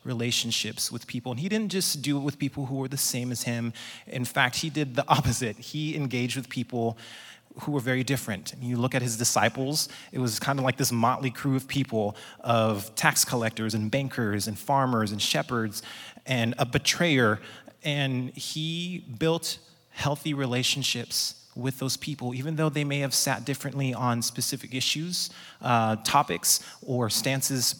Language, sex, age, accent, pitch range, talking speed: English, male, 30-49, American, 115-140 Hz, 175 wpm